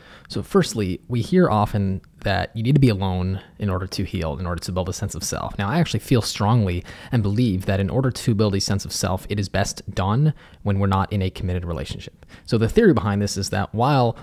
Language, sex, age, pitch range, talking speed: English, male, 20-39, 95-115 Hz, 245 wpm